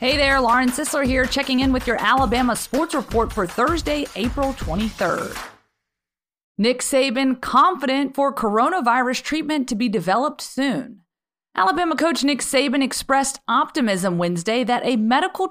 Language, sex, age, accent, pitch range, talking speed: English, female, 30-49, American, 205-270 Hz, 140 wpm